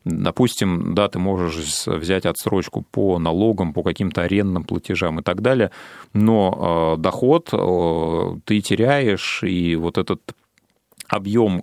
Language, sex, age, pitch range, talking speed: Russian, male, 30-49, 85-105 Hz, 120 wpm